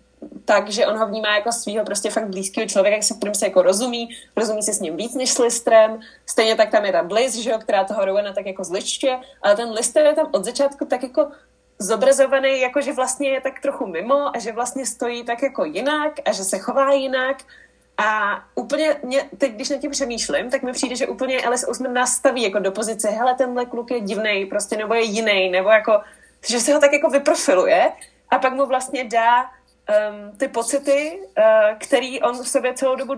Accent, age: native, 20-39